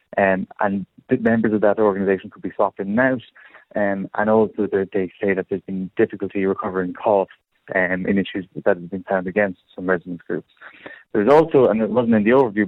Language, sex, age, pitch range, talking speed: English, male, 20-39, 95-105 Hz, 210 wpm